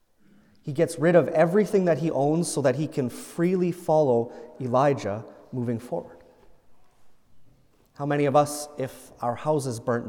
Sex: male